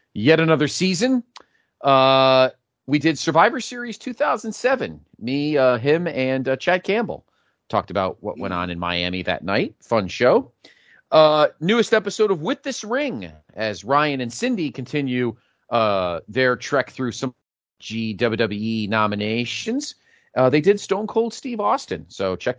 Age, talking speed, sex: 40-59, 145 wpm, male